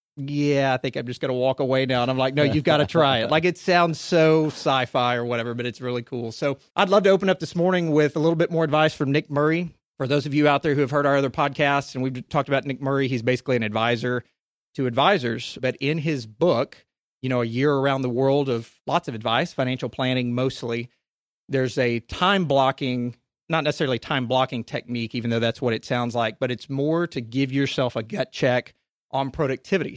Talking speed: 230 wpm